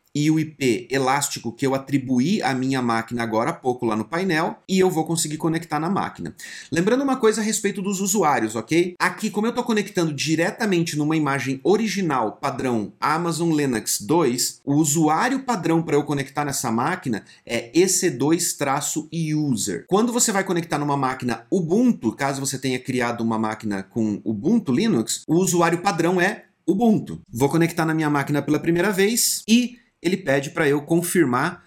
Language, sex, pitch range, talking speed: Portuguese, male, 130-175 Hz, 170 wpm